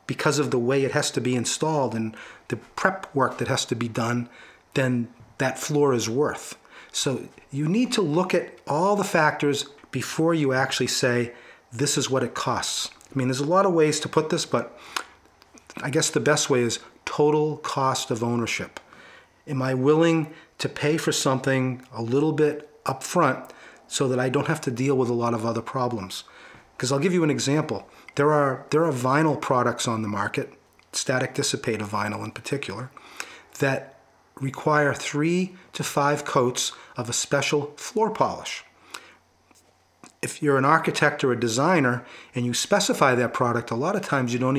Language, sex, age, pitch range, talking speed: English, male, 40-59, 125-150 Hz, 180 wpm